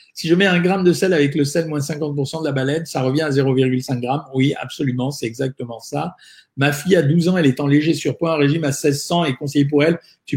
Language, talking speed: French, 255 wpm